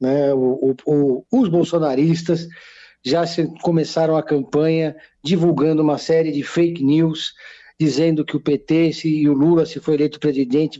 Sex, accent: male, Brazilian